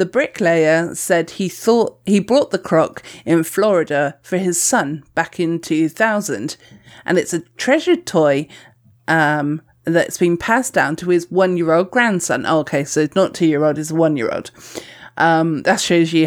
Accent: British